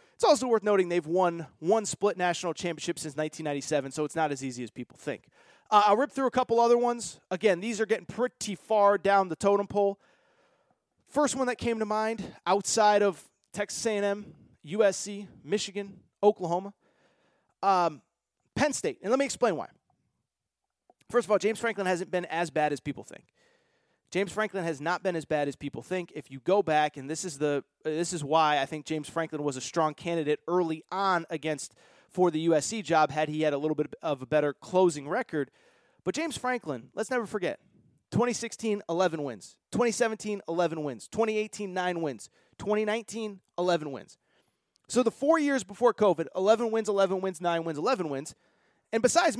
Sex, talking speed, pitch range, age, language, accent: male, 185 wpm, 160-225 Hz, 30-49, English, American